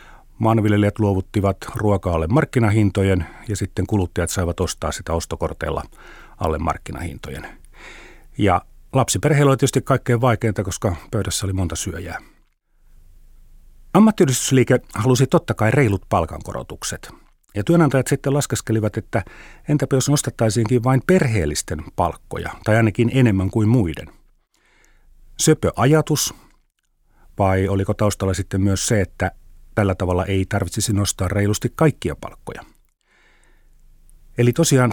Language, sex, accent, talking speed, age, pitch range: Finnish, male, native, 110 wpm, 40-59, 95-130 Hz